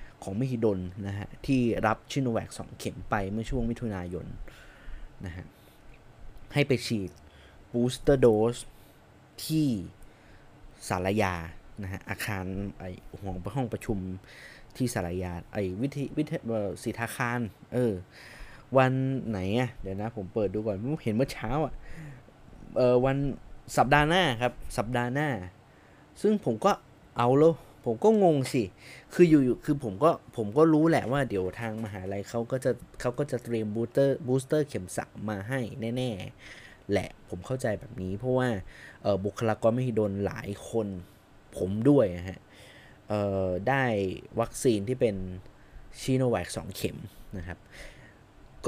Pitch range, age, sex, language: 100-130 Hz, 20-39, male, Thai